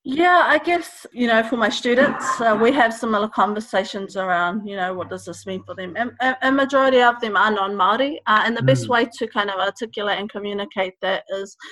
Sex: female